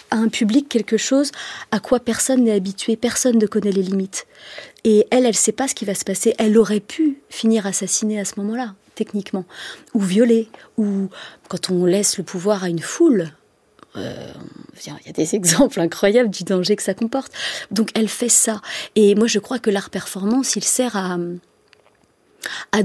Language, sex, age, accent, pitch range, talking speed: French, female, 30-49, French, 195-230 Hz, 190 wpm